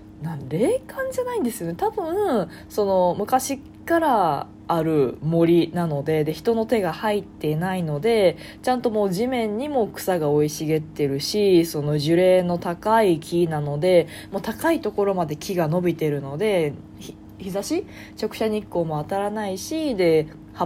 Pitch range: 155-215 Hz